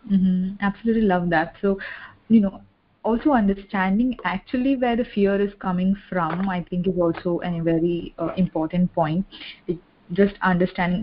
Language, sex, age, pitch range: English, female, 20-39, 170-195 Hz